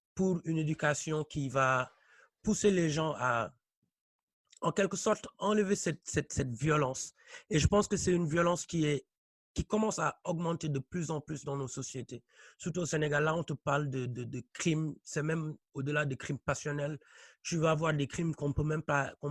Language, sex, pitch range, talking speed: English, male, 135-160 Hz, 185 wpm